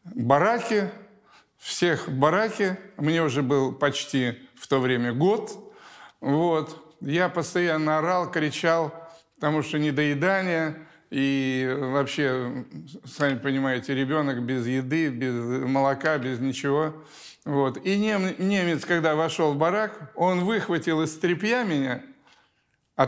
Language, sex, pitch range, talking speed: Russian, male, 140-185 Hz, 110 wpm